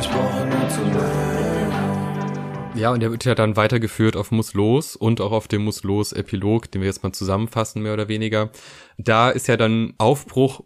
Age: 20-39